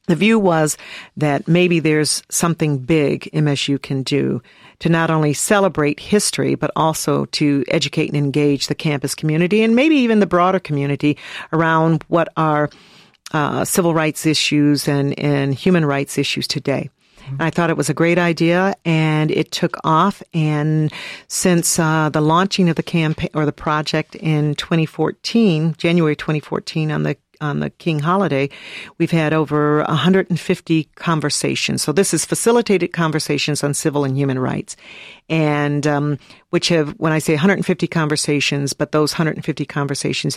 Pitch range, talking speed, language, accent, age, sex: 145-170 Hz, 155 wpm, English, American, 50-69, female